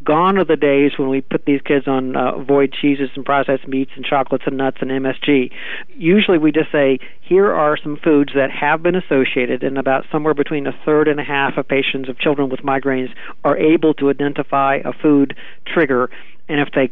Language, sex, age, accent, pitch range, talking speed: English, male, 50-69, American, 135-160 Hz, 210 wpm